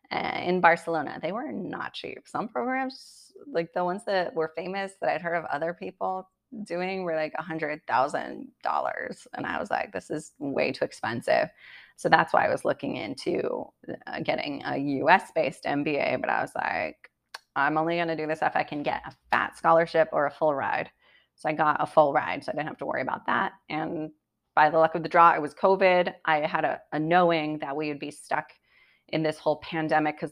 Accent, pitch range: American, 150-175 Hz